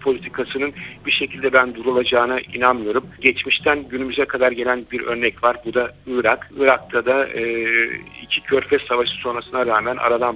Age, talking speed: 60-79, 145 wpm